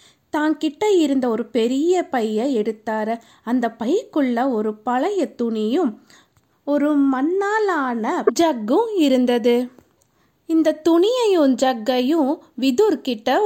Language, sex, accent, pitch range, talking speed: Tamil, female, native, 240-310 Hz, 90 wpm